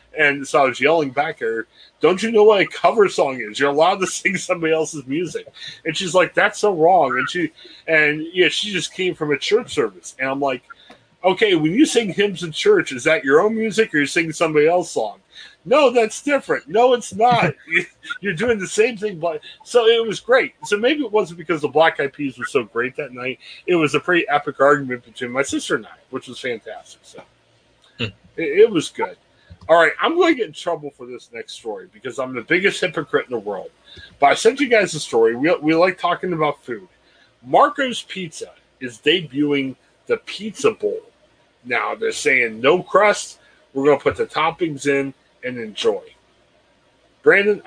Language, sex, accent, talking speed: English, male, American, 205 wpm